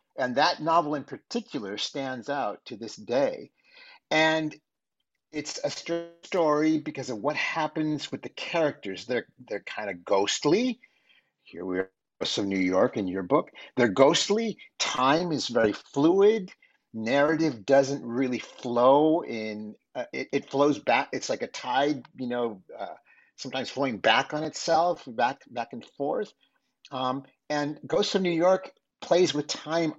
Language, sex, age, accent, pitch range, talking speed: English, male, 50-69, American, 110-160 Hz, 155 wpm